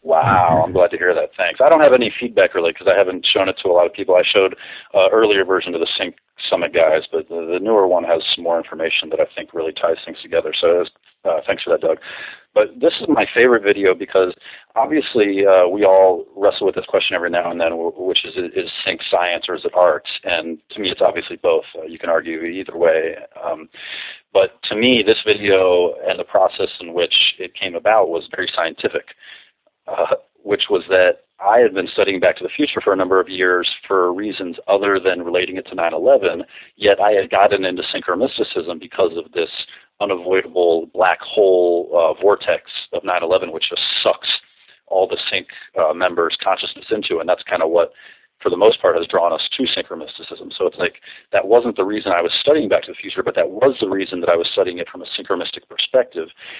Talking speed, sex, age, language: 220 wpm, male, 30-49, English